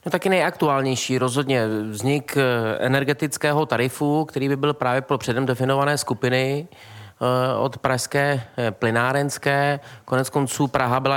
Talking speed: 115 wpm